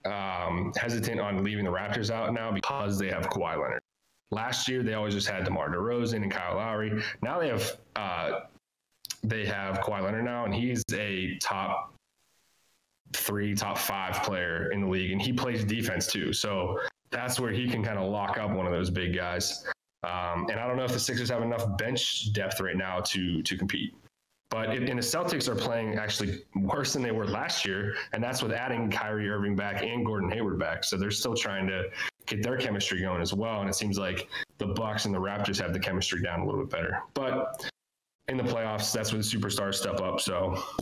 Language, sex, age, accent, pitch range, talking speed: English, male, 20-39, American, 95-115 Hz, 210 wpm